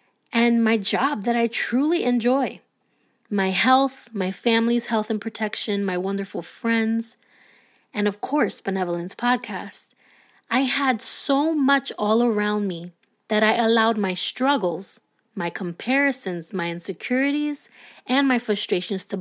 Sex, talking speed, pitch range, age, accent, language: female, 130 wpm, 195-245 Hz, 20-39, American, English